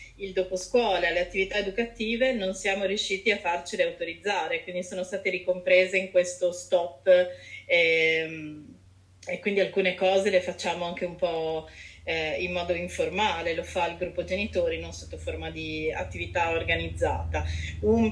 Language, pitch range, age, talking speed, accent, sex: Italian, 175-210 Hz, 30-49, 145 wpm, native, female